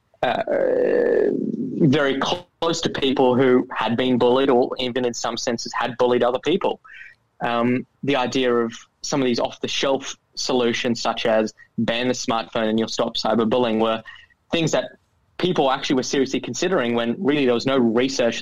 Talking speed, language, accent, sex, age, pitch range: 165 wpm, English, Australian, male, 10-29, 115-135 Hz